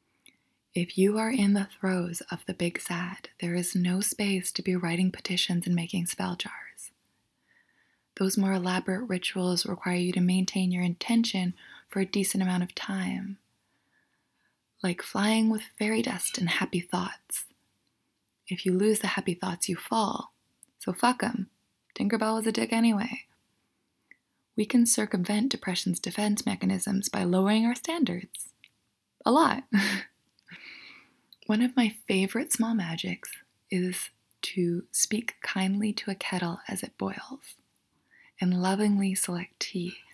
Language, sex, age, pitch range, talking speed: English, female, 20-39, 180-215 Hz, 140 wpm